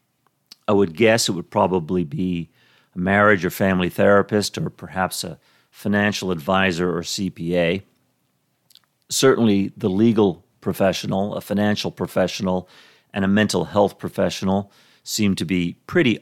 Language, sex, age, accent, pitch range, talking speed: English, male, 50-69, American, 90-110 Hz, 130 wpm